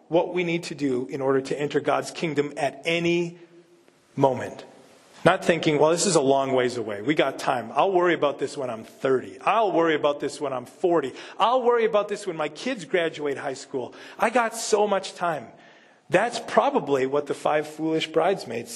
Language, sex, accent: English, male, American